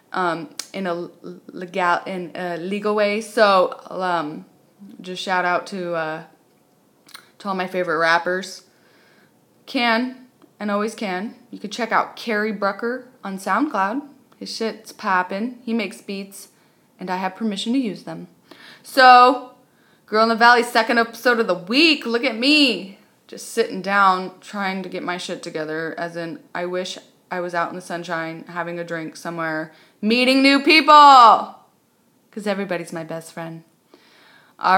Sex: female